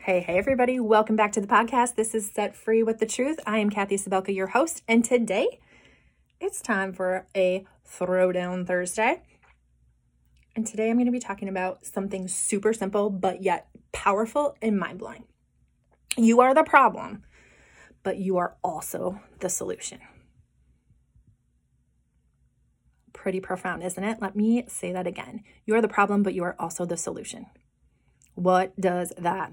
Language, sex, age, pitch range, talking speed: English, female, 20-39, 180-225 Hz, 155 wpm